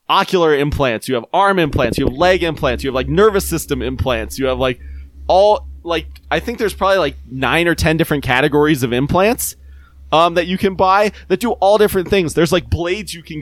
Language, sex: English, male